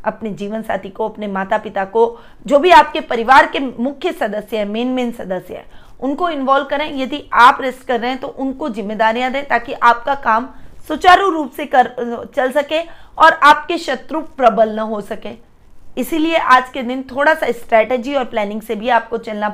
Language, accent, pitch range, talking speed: Hindi, native, 220-280 Hz, 190 wpm